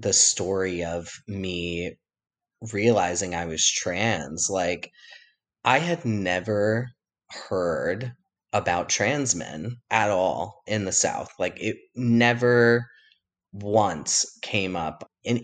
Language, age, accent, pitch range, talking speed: English, 30-49, American, 85-115 Hz, 110 wpm